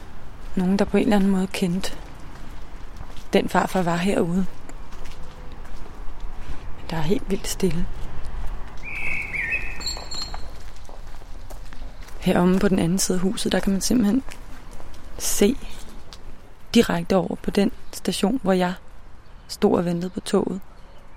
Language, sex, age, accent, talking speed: Danish, female, 20-39, native, 120 wpm